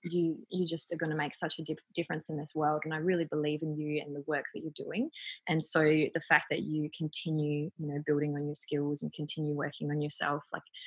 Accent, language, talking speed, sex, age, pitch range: Australian, English, 245 wpm, female, 20-39, 150-180 Hz